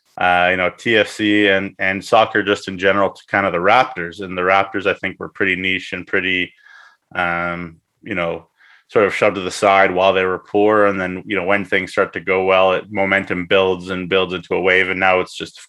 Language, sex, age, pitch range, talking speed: English, male, 20-39, 90-105 Hz, 235 wpm